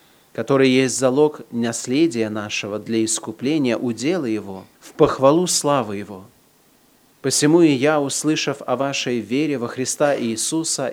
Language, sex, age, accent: Russian, male, 30-49, native